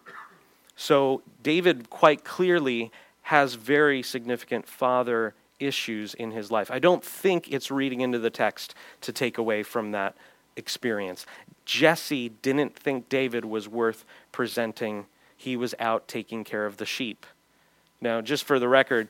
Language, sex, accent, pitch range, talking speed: English, male, American, 115-145 Hz, 145 wpm